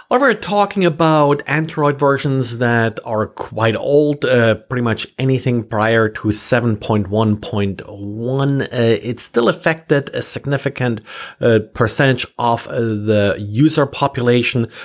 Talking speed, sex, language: 115 wpm, male, English